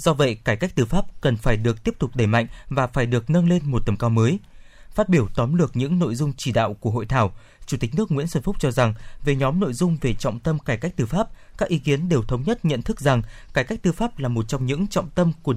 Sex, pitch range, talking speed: male, 130-175 Hz, 280 wpm